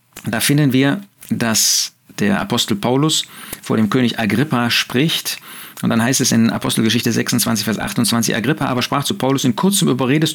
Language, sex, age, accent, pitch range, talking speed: German, male, 40-59, German, 115-155 Hz, 170 wpm